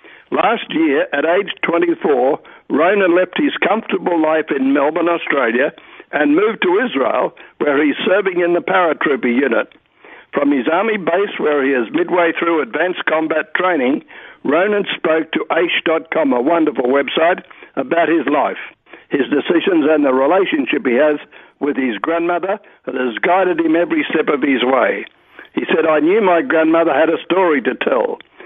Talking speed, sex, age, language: 160 wpm, male, 60-79, English